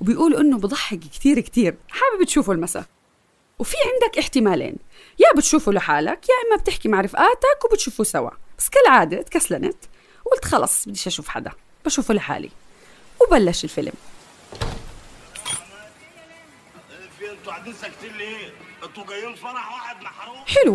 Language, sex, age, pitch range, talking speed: Arabic, female, 30-49, 205-335 Hz, 100 wpm